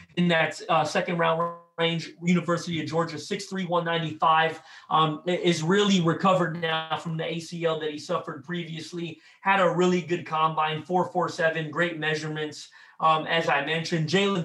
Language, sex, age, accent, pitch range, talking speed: English, male, 30-49, American, 160-180 Hz, 155 wpm